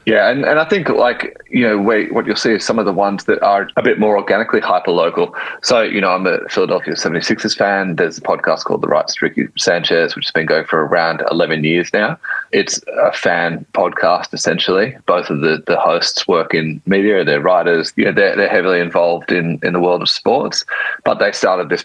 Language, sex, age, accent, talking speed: English, male, 30-49, Australian, 225 wpm